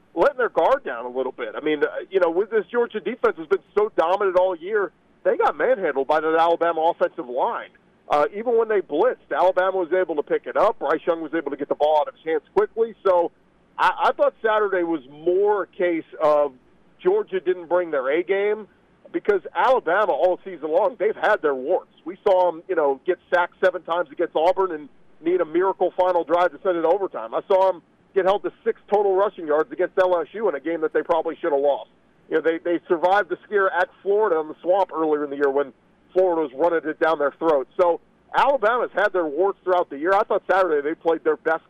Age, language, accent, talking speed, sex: 40-59, English, American, 230 wpm, male